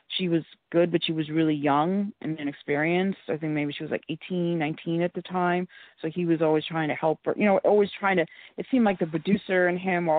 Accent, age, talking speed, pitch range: American, 30-49, 245 wpm, 155-175 Hz